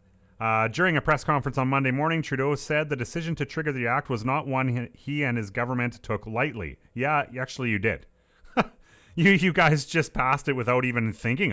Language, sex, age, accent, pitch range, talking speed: English, male, 30-49, American, 110-150 Hz, 200 wpm